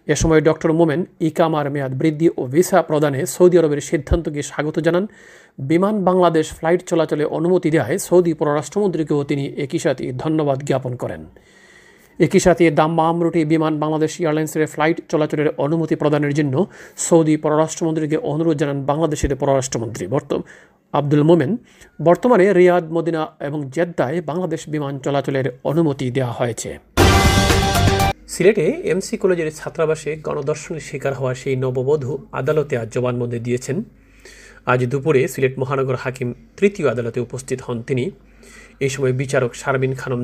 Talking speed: 135 wpm